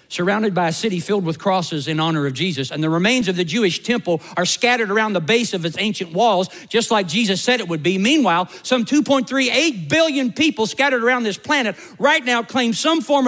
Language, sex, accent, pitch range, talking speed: English, male, American, 135-230 Hz, 215 wpm